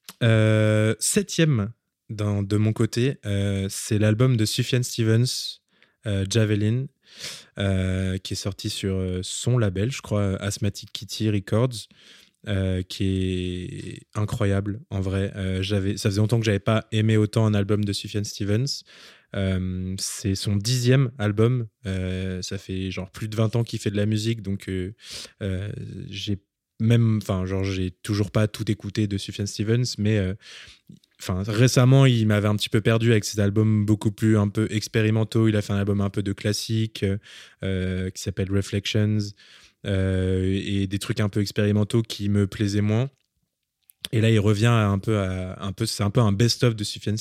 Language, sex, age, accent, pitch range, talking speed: French, male, 20-39, French, 100-115 Hz, 175 wpm